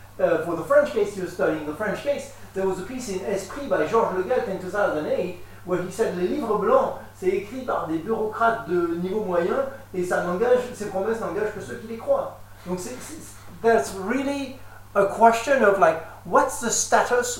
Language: French